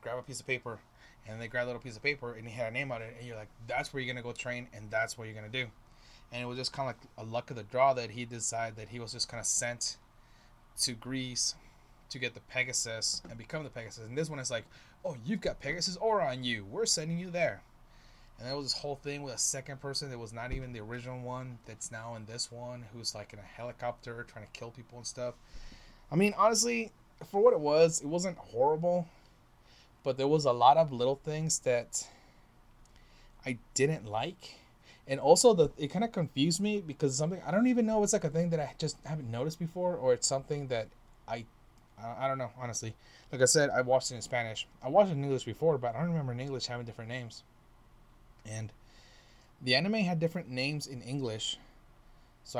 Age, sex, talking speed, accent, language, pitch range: 20-39, male, 235 wpm, American, English, 120-150 Hz